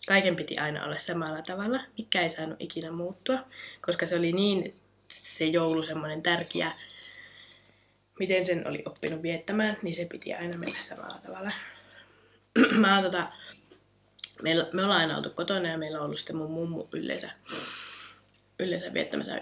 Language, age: Finnish, 20-39